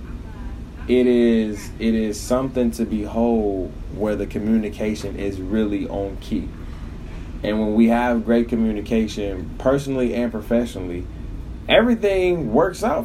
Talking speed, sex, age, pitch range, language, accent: 120 wpm, male, 20-39, 90-110 Hz, English, American